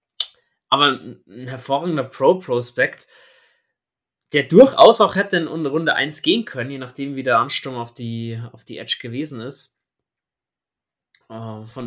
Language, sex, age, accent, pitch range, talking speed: German, male, 20-39, German, 125-160 Hz, 125 wpm